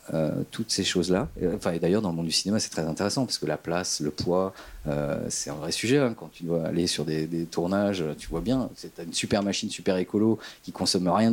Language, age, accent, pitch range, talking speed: French, 40-59, French, 85-110 Hz, 255 wpm